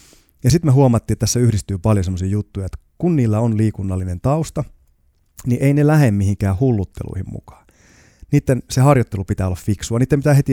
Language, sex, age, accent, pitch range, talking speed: Finnish, male, 30-49, native, 95-120 Hz, 180 wpm